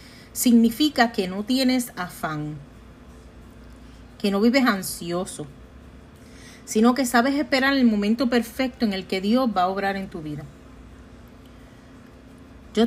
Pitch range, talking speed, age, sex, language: 190-245 Hz, 125 wpm, 40-59, female, Spanish